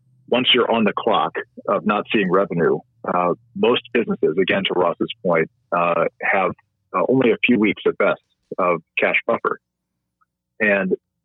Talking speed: 155 wpm